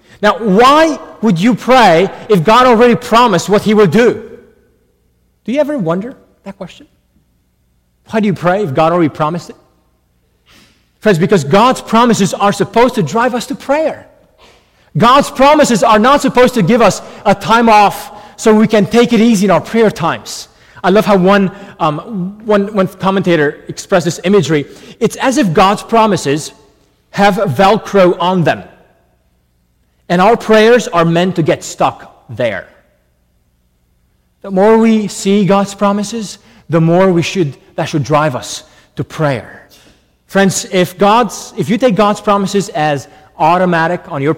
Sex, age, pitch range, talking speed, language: male, 30-49, 145-210 Hz, 160 wpm, English